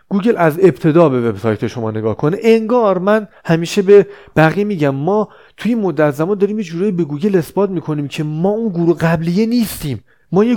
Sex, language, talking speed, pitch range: male, Persian, 180 wpm, 125-185 Hz